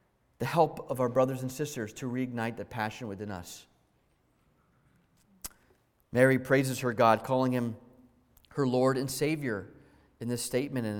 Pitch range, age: 125-165 Hz, 30-49